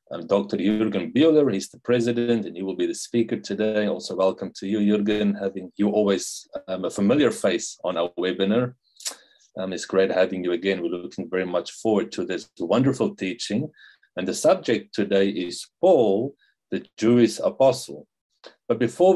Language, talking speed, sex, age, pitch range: English, 170 wpm, male, 40-59, 95-115 Hz